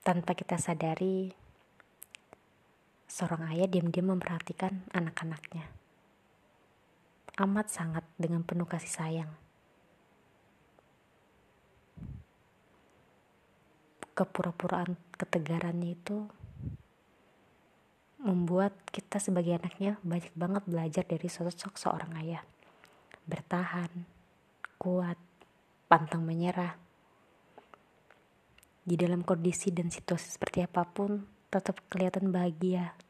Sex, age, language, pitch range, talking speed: female, 20-39, Indonesian, 170-190 Hz, 75 wpm